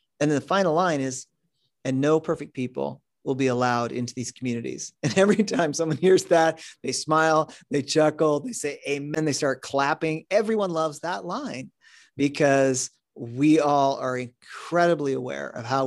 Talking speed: 165 wpm